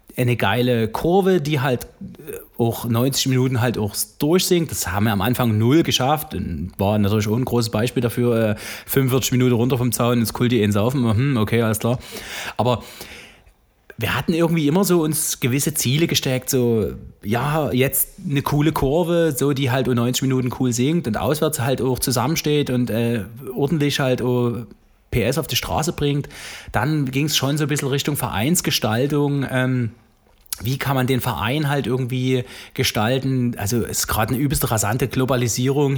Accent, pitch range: German, 120-145 Hz